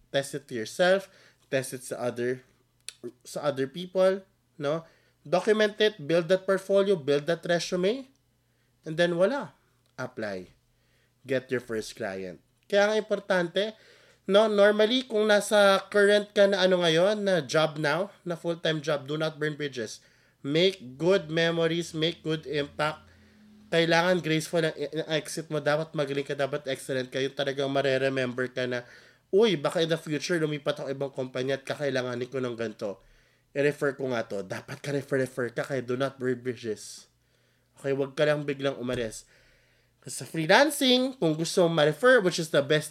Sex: male